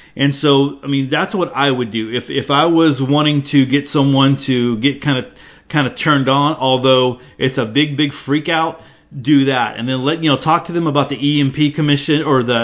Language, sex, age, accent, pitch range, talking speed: English, male, 40-59, American, 125-150 Hz, 235 wpm